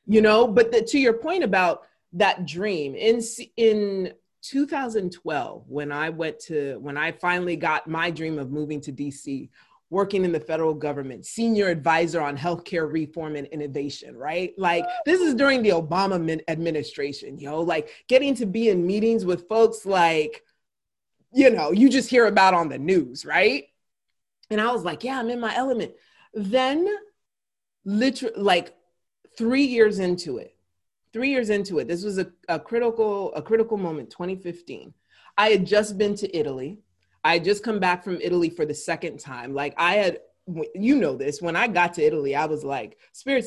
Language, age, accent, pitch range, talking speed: English, 30-49, American, 155-225 Hz, 180 wpm